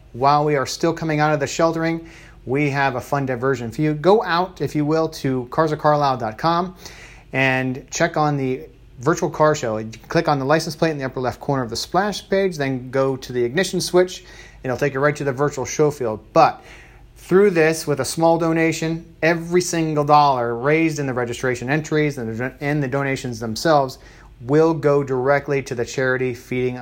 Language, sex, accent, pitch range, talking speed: English, male, American, 125-155 Hz, 190 wpm